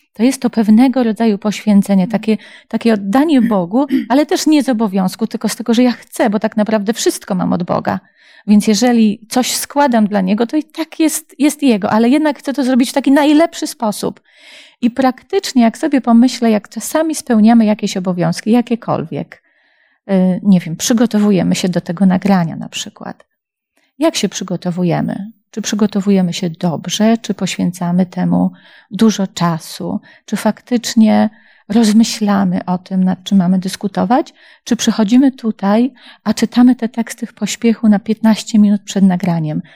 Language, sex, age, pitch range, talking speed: Polish, female, 30-49, 205-255 Hz, 155 wpm